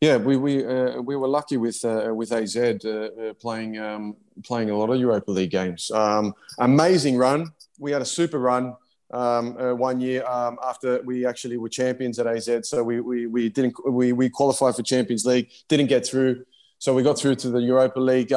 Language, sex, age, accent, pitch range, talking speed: English, male, 20-39, Australian, 115-130 Hz, 210 wpm